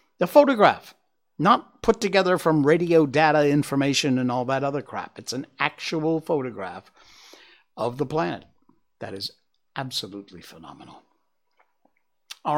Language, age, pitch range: English, 60-79, 110-160 Hz